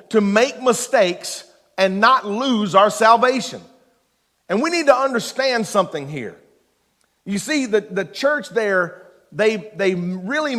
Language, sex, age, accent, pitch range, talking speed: English, male, 50-69, American, 160-240 Hz, 135 wpm